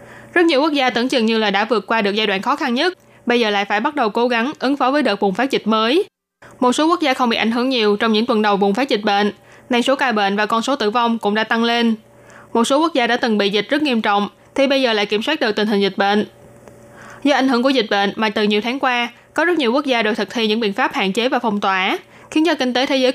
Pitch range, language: 210-260 Hz, Vietnamese